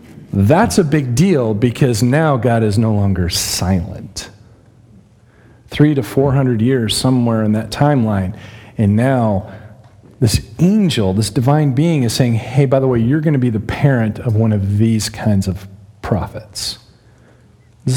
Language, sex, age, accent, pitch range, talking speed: English, male, 40-59, American, 110-150 Hz, 155 wpm